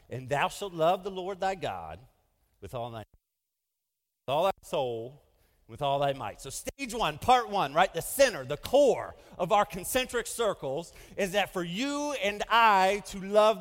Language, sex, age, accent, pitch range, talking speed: English, male, 40-59, American, 140-235 Hz, 180 wpm